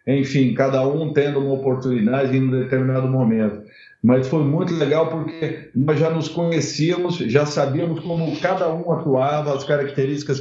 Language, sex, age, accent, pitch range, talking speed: Portuguese, male, 50-69, Brazilian, 130-170 Hz, 155 wpm